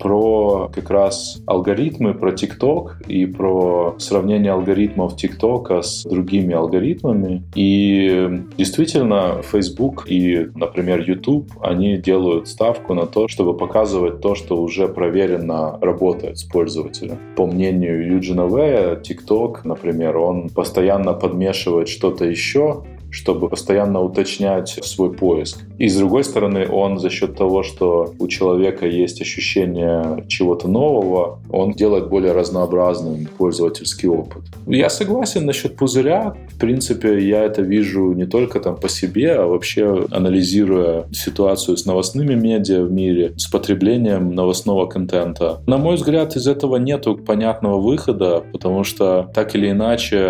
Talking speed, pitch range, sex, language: 130 wpm, 90-105 Hz, male, Russian